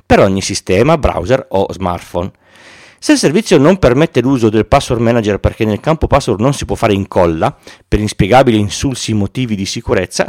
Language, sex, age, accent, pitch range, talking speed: Italian, male, 40-59, native, 100-125 Hz, 180 wpm